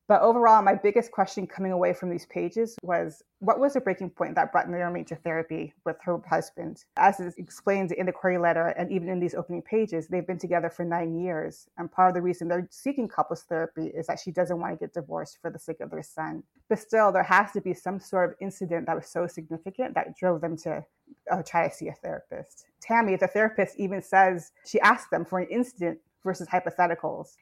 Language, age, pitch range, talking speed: English, 30-49, 170-200 Hz, 225 wpm